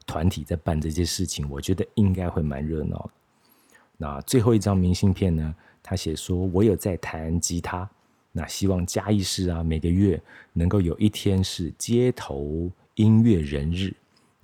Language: Chinese